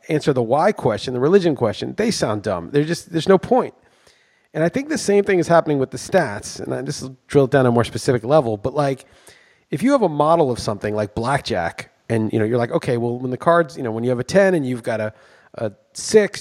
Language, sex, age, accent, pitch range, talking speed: English, male, 30-49, American, 125-185 Hz, 250 wpm